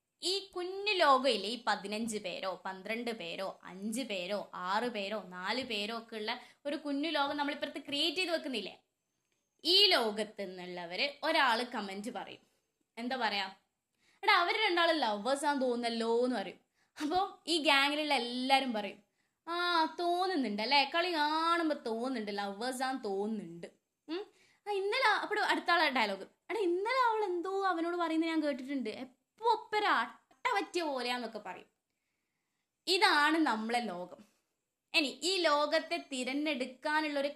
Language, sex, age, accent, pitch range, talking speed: Malayalam, female, 20-39, native, 225-320 Hz, 110 wpm